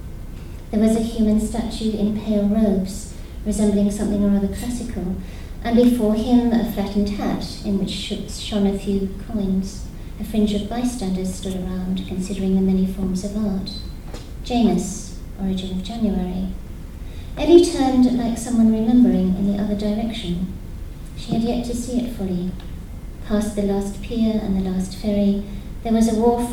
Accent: British